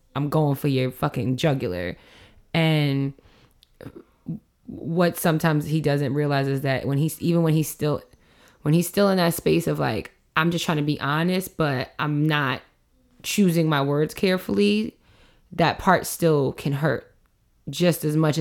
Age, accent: 20-39, American